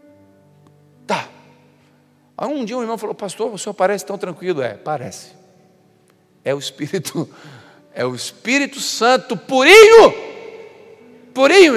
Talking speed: 120 wpm